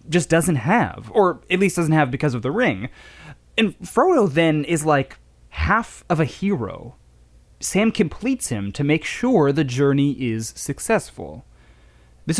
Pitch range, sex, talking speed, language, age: 110-180 Hz, male, 155 wpm, English, 20-39